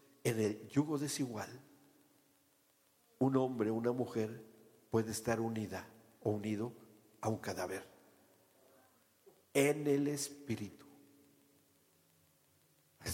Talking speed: 90 wpm